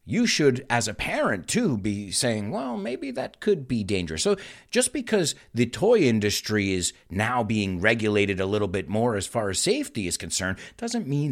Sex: male